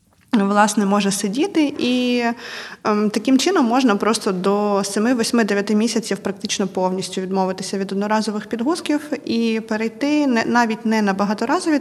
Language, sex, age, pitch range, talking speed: Ukrainian, female, 20-39, 200-235 Hz, 125 wpm